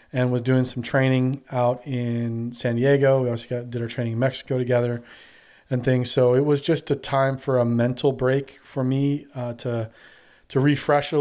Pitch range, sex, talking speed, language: 125-140 Hz, male, 200 wpm, English